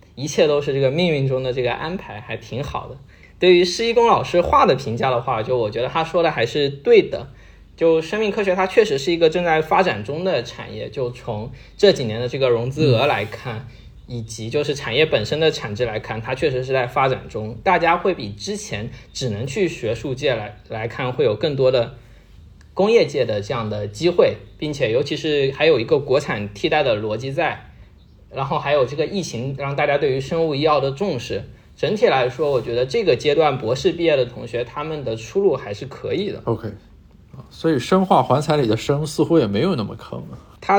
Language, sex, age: Chinese, male, 20-39